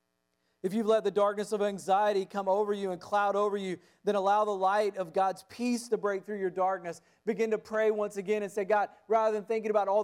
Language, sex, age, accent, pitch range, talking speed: English, male, 40-59, American, 155-210 Hz, 235 wpm